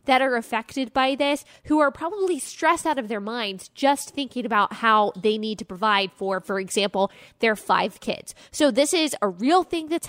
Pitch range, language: 210-290 Hz, English